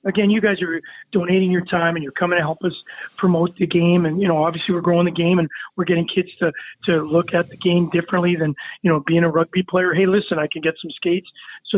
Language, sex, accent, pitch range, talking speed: English, male, American, 175-195 Hz, 255 wpm